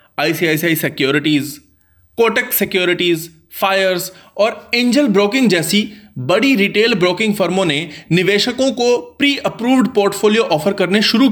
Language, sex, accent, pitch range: Hindi, male, native, 155-230 Hz